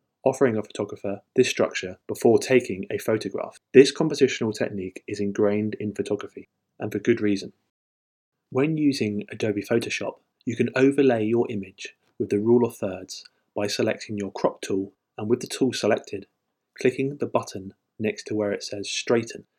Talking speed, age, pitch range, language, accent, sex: 160 wpm, 20-39, 100-125 Hz, English, British, male